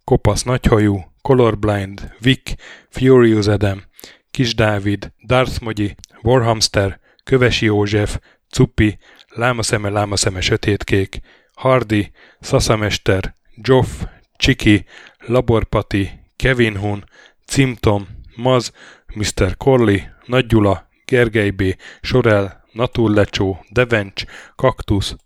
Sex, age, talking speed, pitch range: male, 10-29, 80 wpm, 100-120 Hz